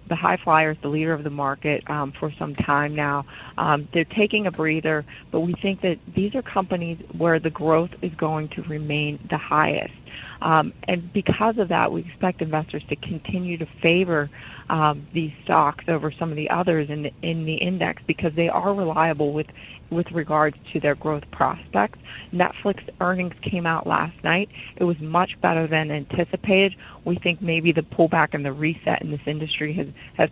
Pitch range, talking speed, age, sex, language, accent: 150-180 Hz, 190 wpm, 30-49, female, English, American